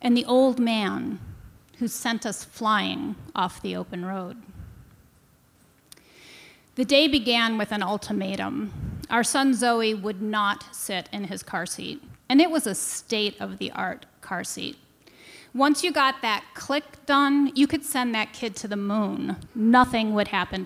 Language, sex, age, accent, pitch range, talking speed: English, female, 30-49, American, 210-265 Hz, 150 wpm